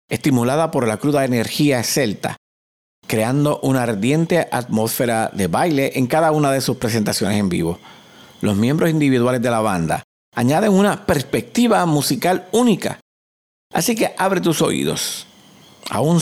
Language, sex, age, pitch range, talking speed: Spanish, male, 50-69, 115-160 Hz, 140 wpm